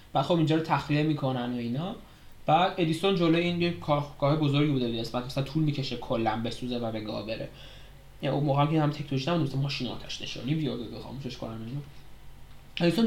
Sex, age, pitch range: male, 20-39, 130-160 Hz